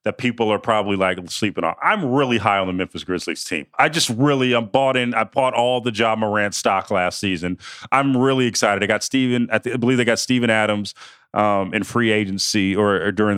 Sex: male